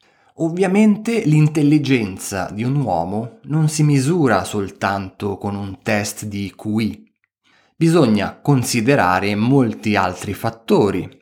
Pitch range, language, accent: 105-145 Hz, Italian, native